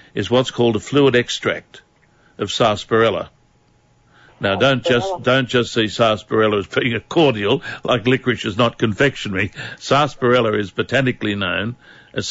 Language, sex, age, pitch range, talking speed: English, male, 60-79, 110-130 Hz, 140 wpm